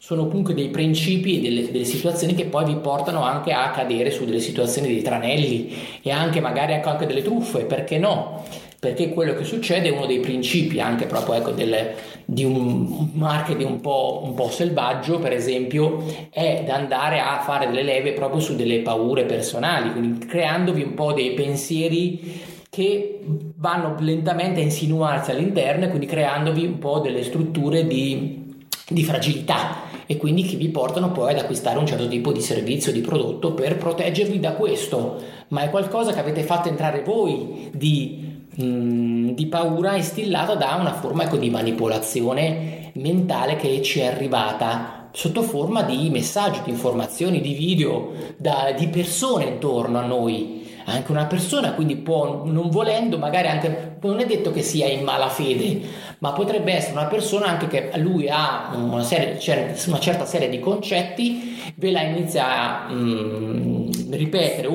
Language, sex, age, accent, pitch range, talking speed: Italian, male, 20-39, native, 130-175 Hz, 165 wpm